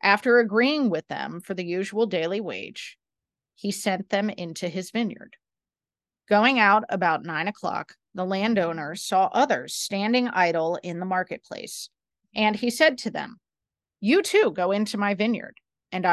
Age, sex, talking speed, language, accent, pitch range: 30-49, female, 155 wpm, English, American, 180-235 Hz